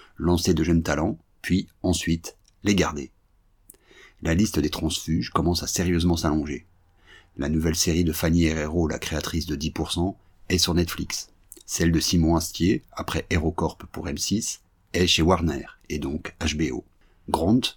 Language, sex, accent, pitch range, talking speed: French, male, French, 80-90 Hz, 150 wpm